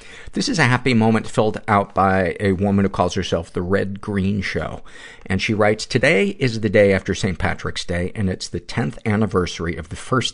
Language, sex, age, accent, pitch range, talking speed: English, male, 50-69, American, 90-115 Hz, 210 wpm